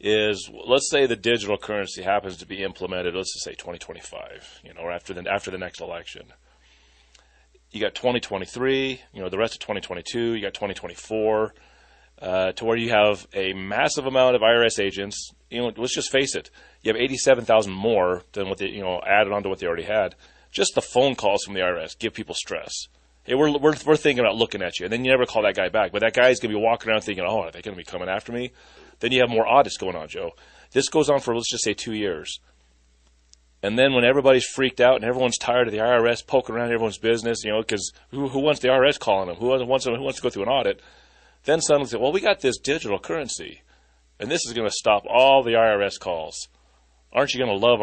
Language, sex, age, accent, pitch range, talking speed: English, male, 30-49, American, 95-125 Hz, 245 wpm